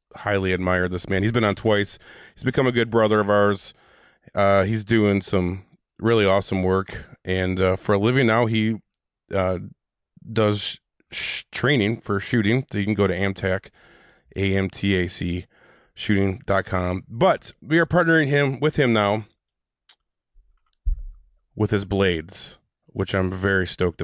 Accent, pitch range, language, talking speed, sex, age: American, 95-110 Hz, English, 145 wpm, male, 20-39